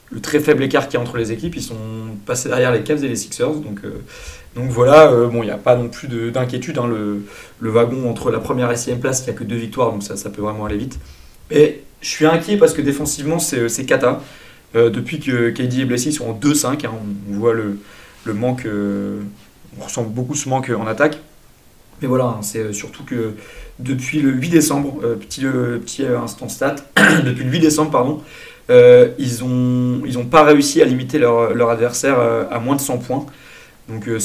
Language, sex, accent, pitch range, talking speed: French, male, French, 110-135 Hz, 230 wpm